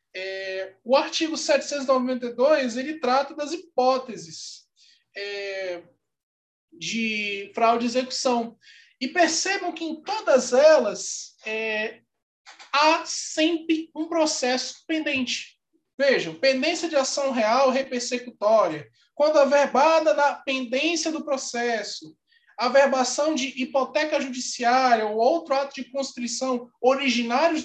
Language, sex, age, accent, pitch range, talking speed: Portuguese, male, 20-39, Brazilian, 240-310 Hz, 95 wpm